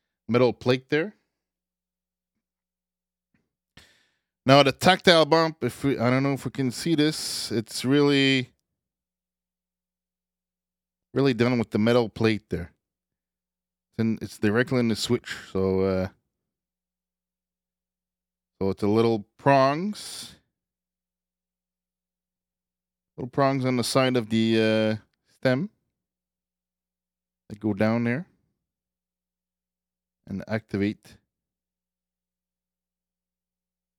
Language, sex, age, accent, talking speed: English, male, 20-39, American, 95 wpm